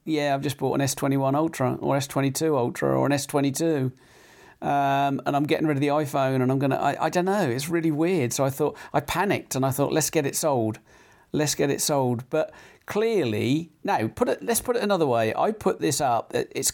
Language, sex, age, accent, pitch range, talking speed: English, male, 40-59, British, 125-155 Hz, 235 wpm